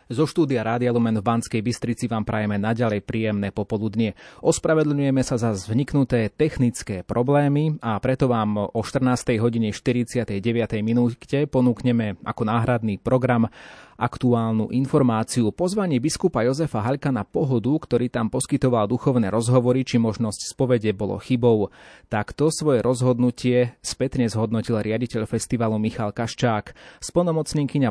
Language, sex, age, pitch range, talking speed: Slovak, male, 30-49, 110-130 Hz, 120 wpm